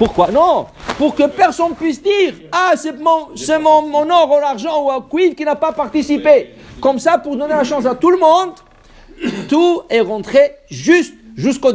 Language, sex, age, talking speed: English, male, 60-79, 190 wpm